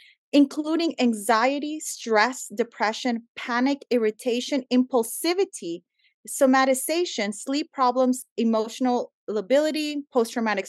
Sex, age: female, 30-49